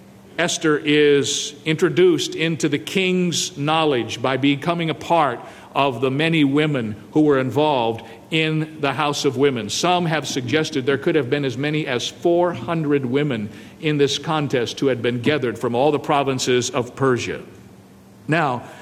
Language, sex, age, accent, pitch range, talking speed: English, male, 50-69, American, 135-160 Hz, 155 wpm